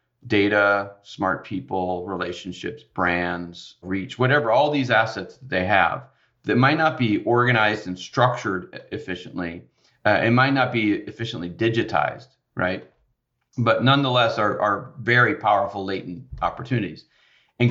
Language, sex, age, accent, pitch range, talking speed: English, male, 40-59, American, 100-120 Hz, 130 wpm